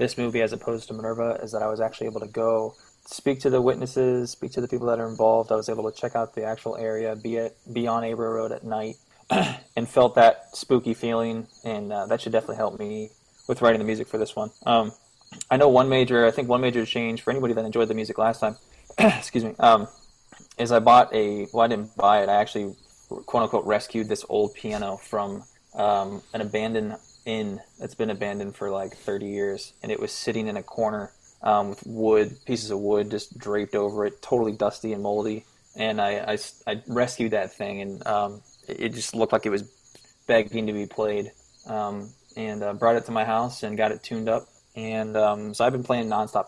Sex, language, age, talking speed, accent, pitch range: male, English, 20-39, 220 wpm, American, 105-115 Hz